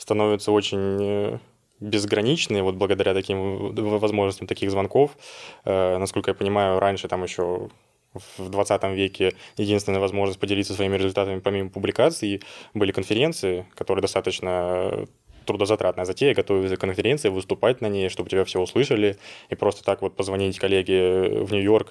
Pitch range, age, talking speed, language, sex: 95-100 Hz, 20-39, 135 wpm, Russian, male